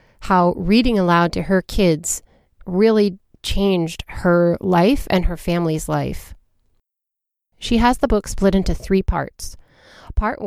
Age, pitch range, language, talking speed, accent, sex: 30-49, 170-210 Hz, English, 130 wpm, American, female